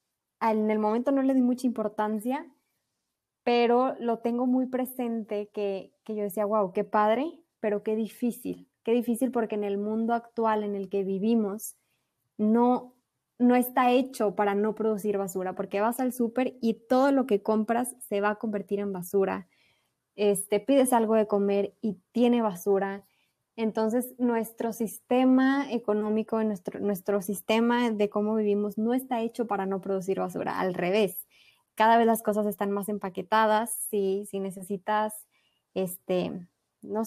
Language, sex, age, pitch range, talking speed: Spanish, female, 20-39, 200-235 Hz, 155 wpm